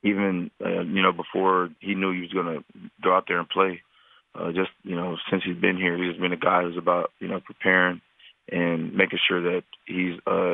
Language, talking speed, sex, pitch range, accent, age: English, 215 wpm, male, 90-100 Hz, American, 30-49